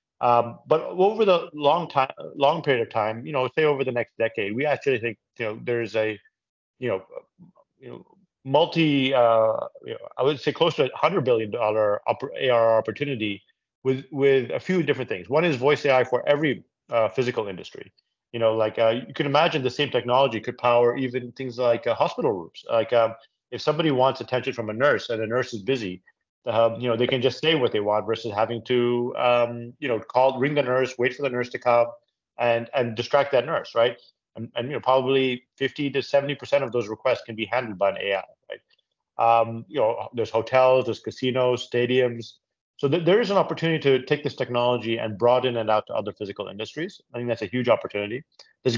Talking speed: 215 wpm